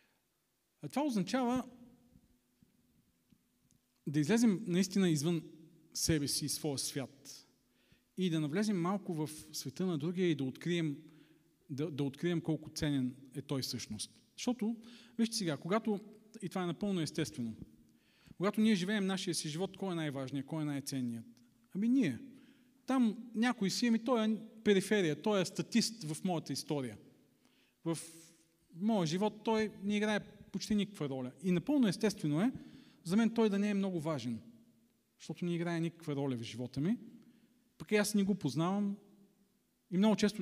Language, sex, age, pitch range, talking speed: Bulgarian, male, 40-59, 150-210 Hz, 155 wpm